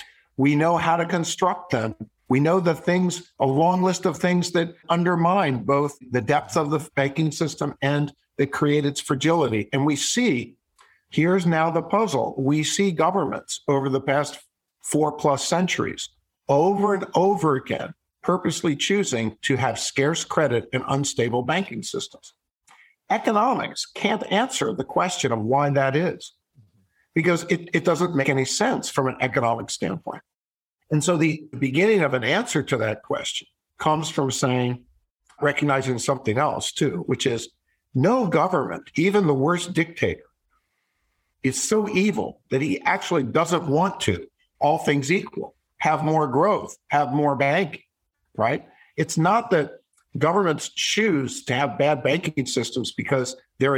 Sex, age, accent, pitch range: male, 50-69, American, 135-175 Hz